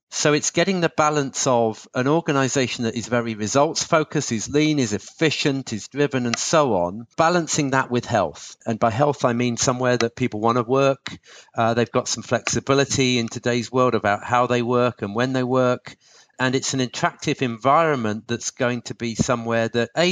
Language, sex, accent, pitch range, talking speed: English, male, British, 115-145 Hz, 190 wpm